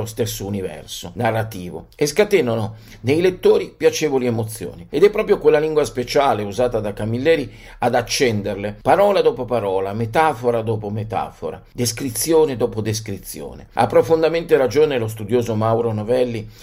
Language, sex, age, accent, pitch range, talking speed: Italian, male, 50-69, native, 110-150 Hz, 130 wpm